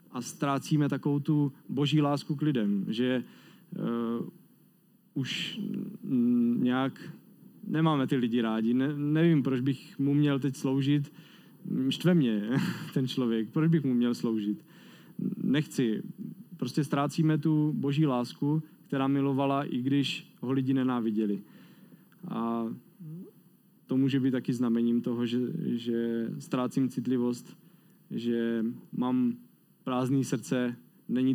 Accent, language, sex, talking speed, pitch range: native, Czech, male, 115 wpm, 125-150 Hz